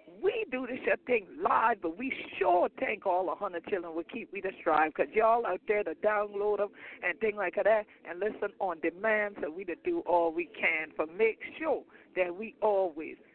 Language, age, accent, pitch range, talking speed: English, 60-79, American, 175-260 Hz, 205 wpm